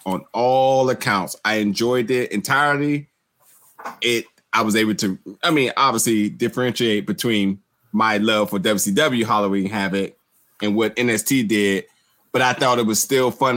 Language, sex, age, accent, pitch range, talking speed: English, male, 20-39, American, 100-125 Hz, 150 wpm